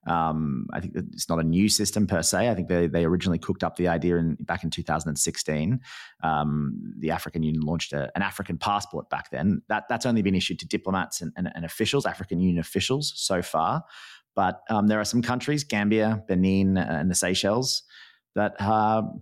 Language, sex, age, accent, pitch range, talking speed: English, male, 30-49, Australian, 85-110 Hz, 200 wpm